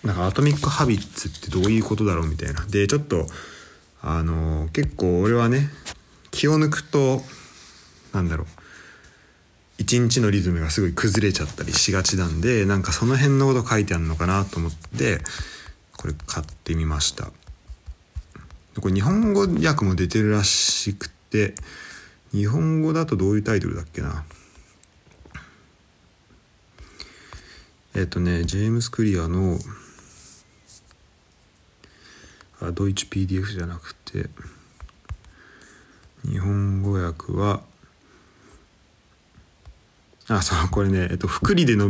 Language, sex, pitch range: Japanese, male, 85-110 Hz